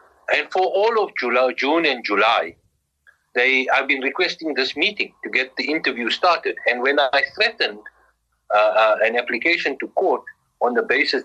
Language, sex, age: English, male, 60-79